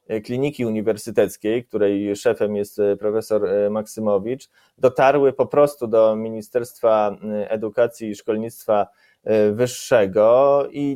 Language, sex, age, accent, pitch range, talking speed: Polish, male, 20-39, native, 115-150 Hz, 95 wpm